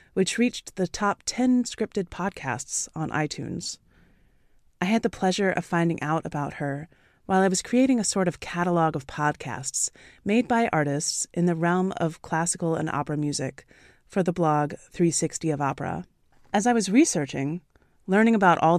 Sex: female